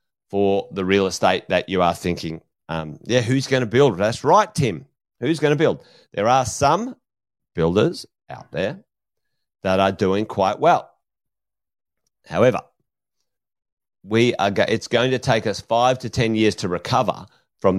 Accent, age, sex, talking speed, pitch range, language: Australian, 30-49, male, 160 wpm, 110-140 Hz, English